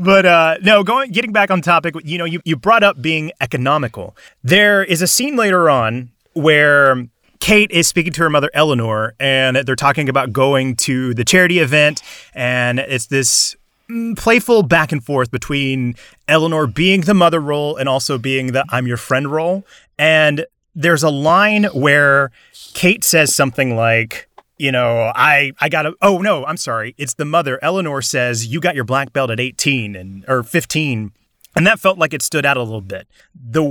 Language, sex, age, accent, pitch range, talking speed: English, male, 30-49, American, 125-165 Hz, 185 wpm